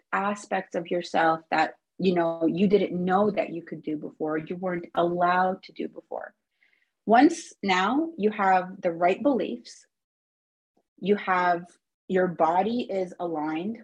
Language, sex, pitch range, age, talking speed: English, female, 175-225 Hz, 30-49, 145 wpm